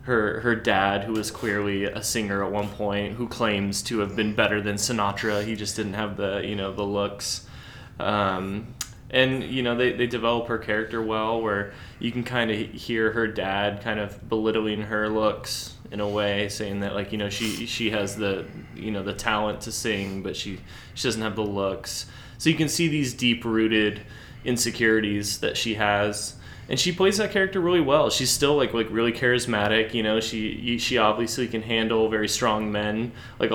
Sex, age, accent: male, 20-39, American